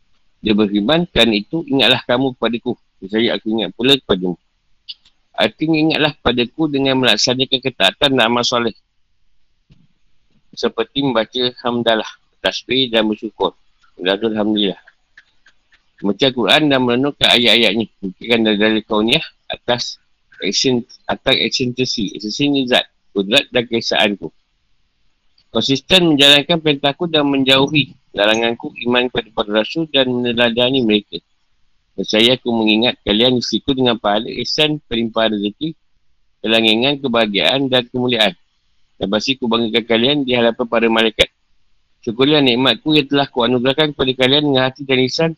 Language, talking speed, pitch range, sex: Malay, 125 wpm, 110-135 Hz, male